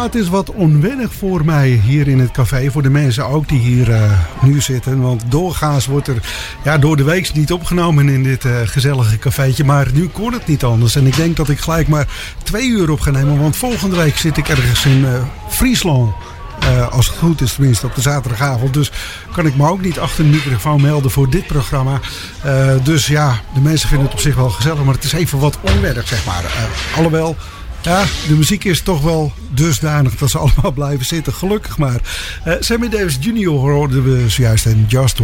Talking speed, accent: 215 wpm, Dutch